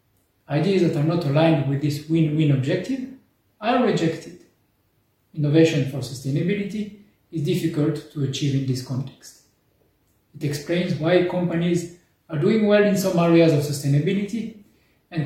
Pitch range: 145-190 Hz